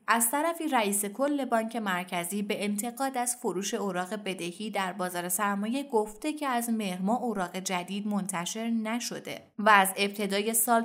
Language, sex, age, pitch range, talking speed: Persian, female, 30-49, 185-235 Hz, 150 wpm